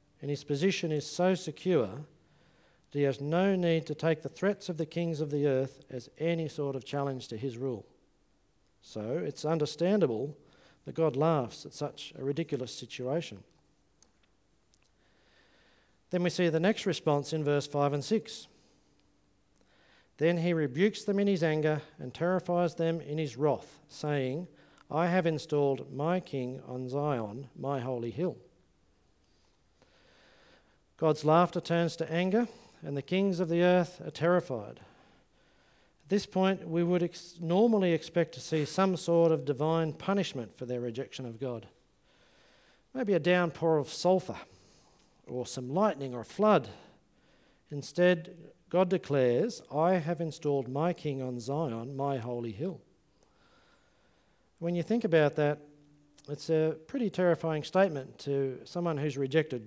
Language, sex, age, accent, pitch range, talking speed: English, male, 50-69, Australian, 135-175 Hz, 145 wpm